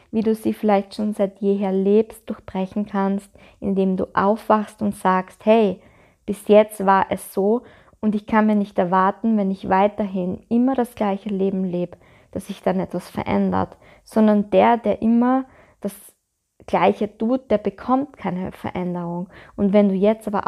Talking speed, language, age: 165 wpm, German, 20-39